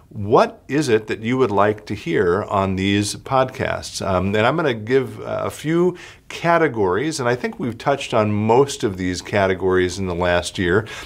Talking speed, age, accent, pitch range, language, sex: 190 wpm, 50-69, American, 95-120 Hz, English, male